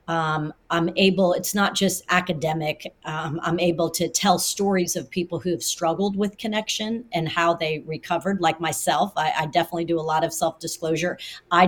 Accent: American